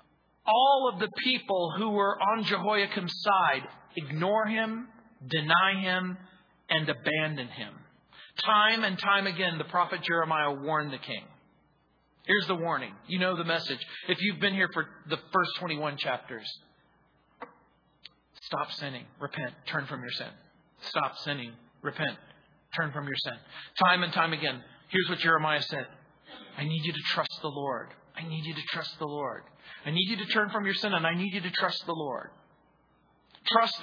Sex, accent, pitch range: male, American, 155-200 Hz